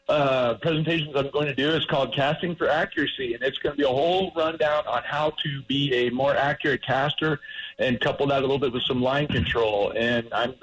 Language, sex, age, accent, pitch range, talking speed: English, male, 50-69, American, 125-155 Hz, 220 wpm